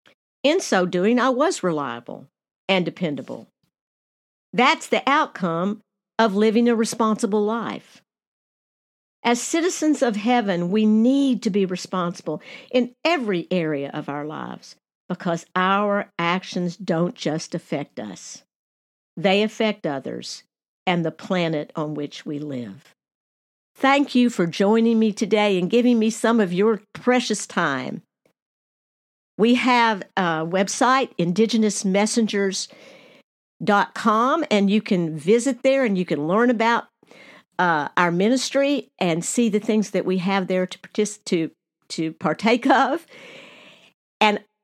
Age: 60-79